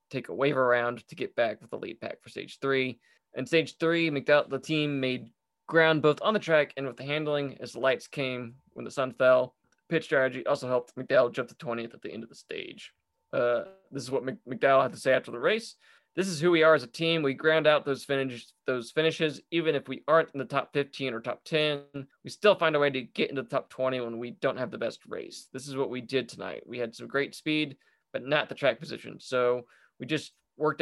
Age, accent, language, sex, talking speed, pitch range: 20-39, American, English, male, 245 wpm, 125-160 Hz